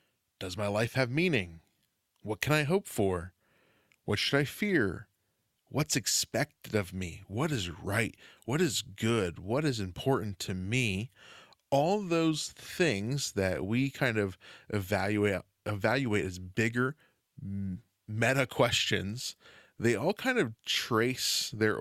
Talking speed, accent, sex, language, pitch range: 130 wpm, American, male, English, 100-130 Hz